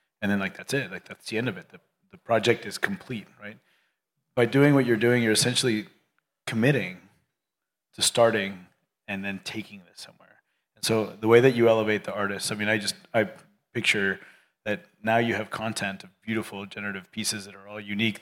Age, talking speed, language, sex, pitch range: 30-49, 200 wpm, English, male, 100-120 Hz